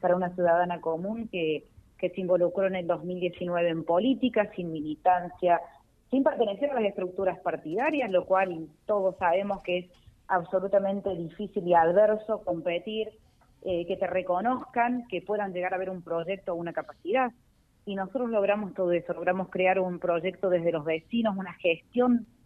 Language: Spanish